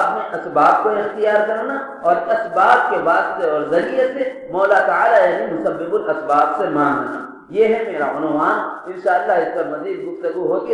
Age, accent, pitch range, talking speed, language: 40-59, Indian, 160-260 Hz, 175 wpm, English